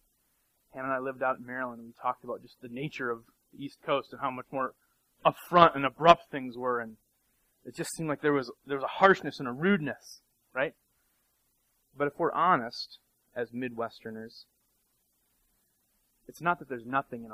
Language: English